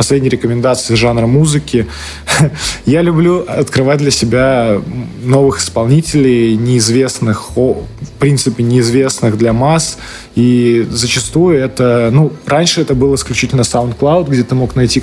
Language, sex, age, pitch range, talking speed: Russian, male, 20-39, 115-140 Hz, 120 wpm